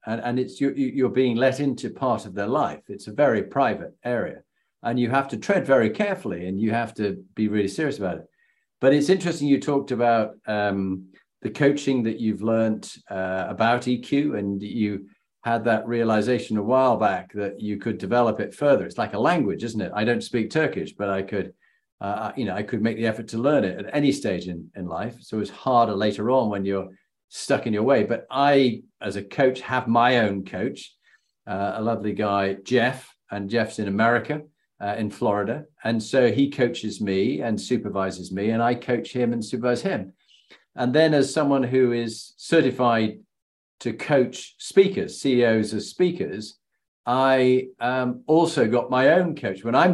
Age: 40-59